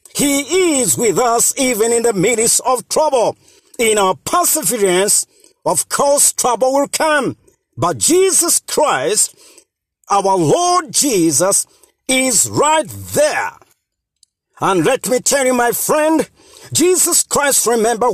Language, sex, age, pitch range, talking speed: English, male, 50-69, 235-315 Hz, 120 wpm